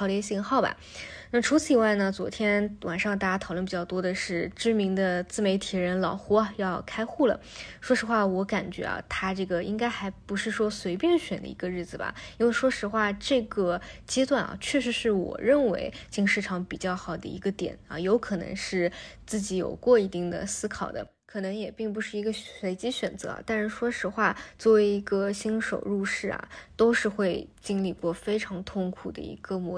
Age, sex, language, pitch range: 20-39, female, Chinese, 190-225 Hz